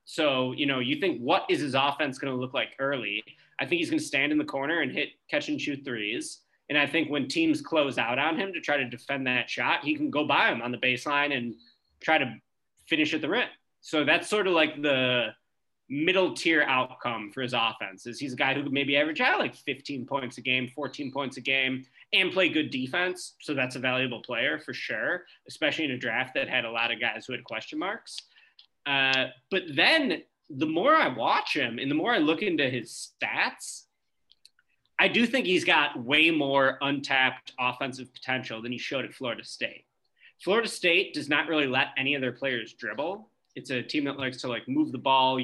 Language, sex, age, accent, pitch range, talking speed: English, male, 20-39, American, 130-175 Hz, 220 wpm